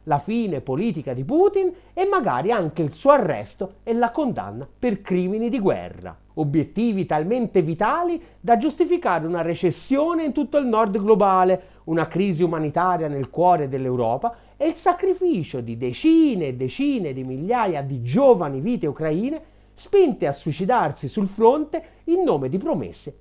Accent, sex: native, male